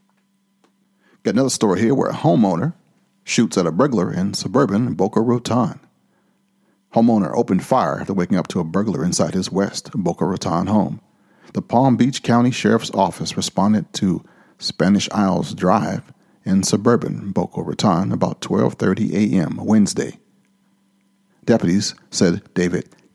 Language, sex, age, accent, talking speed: English, male, 40-59, American, 135 wpm